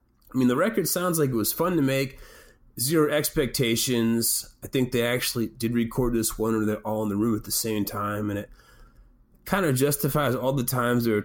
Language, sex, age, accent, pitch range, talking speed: English, male, 30-49, American, 110-130 Hz, 220 wpm